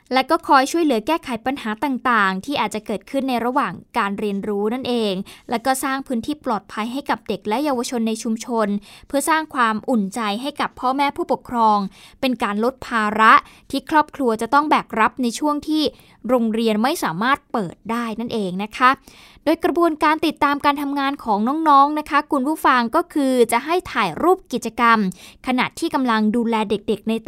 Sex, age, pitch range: female, 20-39, 220-280 Hz